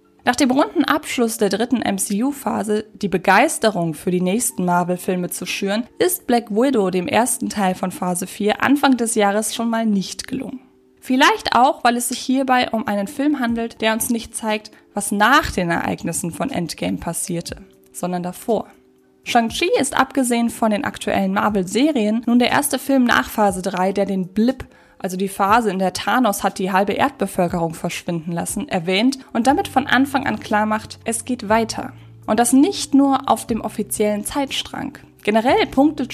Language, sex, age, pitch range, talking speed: German, female, 20-39, 195-255 Hz, 175 wpm